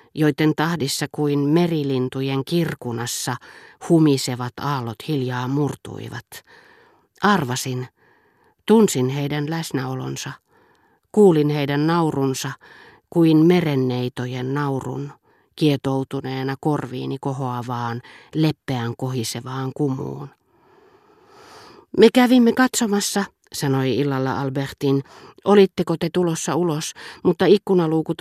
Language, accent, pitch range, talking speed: Finnish, native, 135-175 Hz, 80 wpm